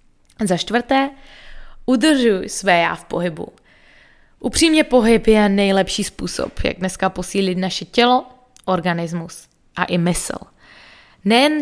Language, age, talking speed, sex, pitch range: Czech, 20-39, 115 wpm, female, 175-215 Hz